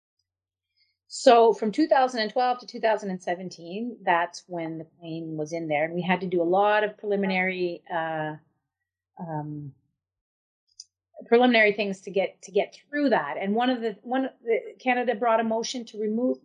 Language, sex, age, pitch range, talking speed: English, female, 30-49, 180-240 Hz, 160 wpm